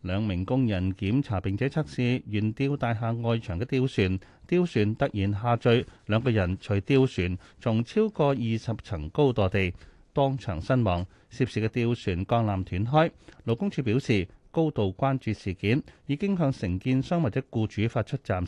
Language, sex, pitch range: Chinese, male, 100-140 Hz